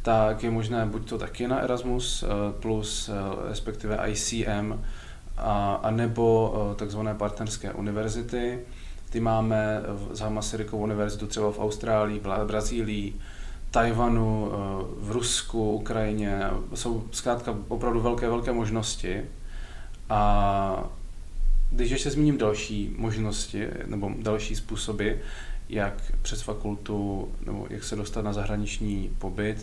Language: Czech